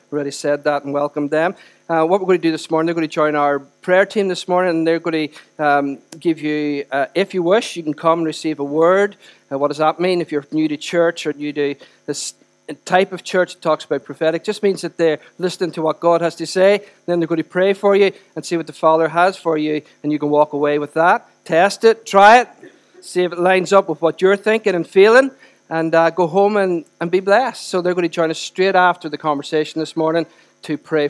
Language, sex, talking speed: English, male, 255 wpm